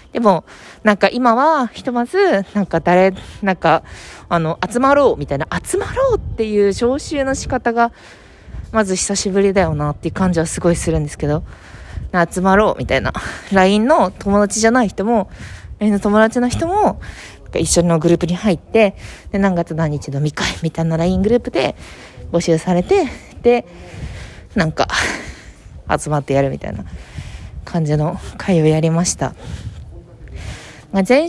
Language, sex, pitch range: Japanese, female, 170-230 Hz